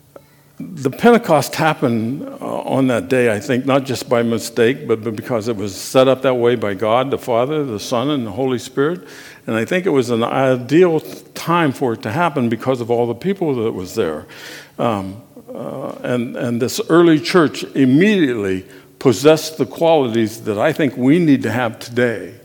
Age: 60-79